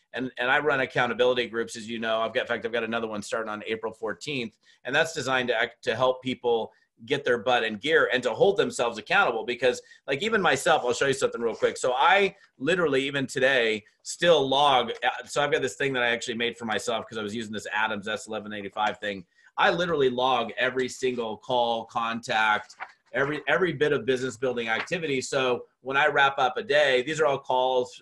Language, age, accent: English, 30-49, American